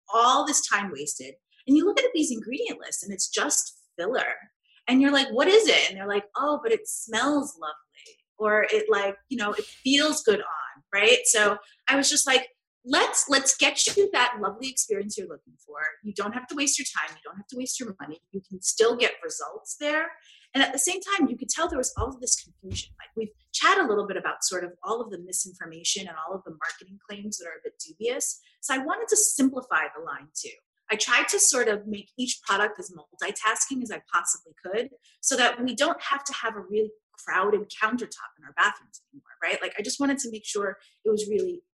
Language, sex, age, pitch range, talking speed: English, female, 30-49, 200-295 Hz, 230 wpm